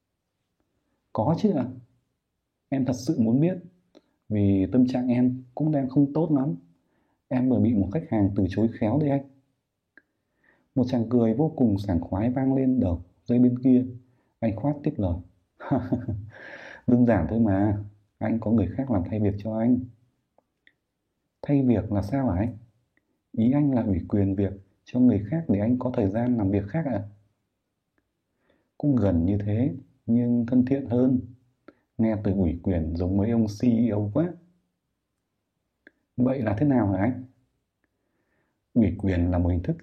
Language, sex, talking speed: Vietnamese, male, 170 wpm